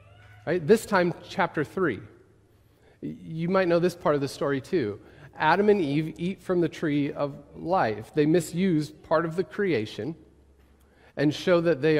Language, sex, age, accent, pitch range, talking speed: English, male, 40-59, American, 130-175 Hz, 160 wpm